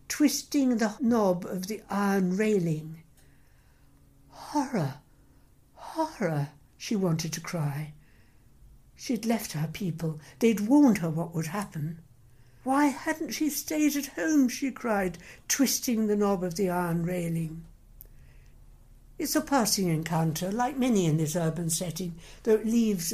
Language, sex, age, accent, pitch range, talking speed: English, female, 60-79, British, 165-235 Hz, 130 wpm